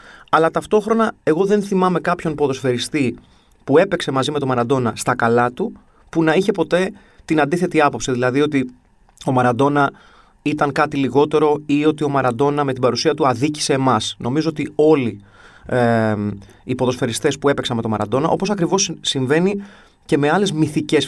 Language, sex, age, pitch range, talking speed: Greek, male, 30-49, 120-160 Hz, 165 wpm